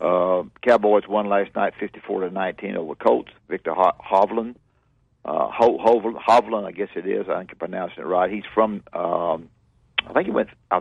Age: 60-79